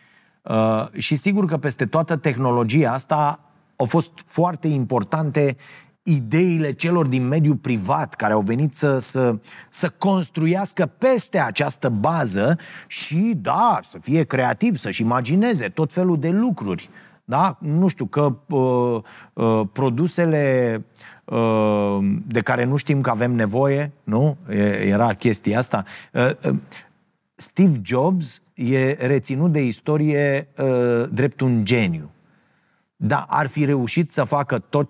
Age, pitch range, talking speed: 30-49, 120-165 Hz, 115 wpm